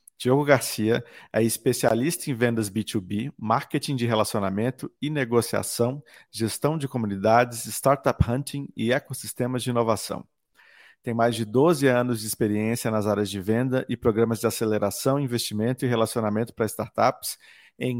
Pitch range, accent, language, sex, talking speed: 110-130 Hz, Brazilian, Portuguese, male, 140 wpm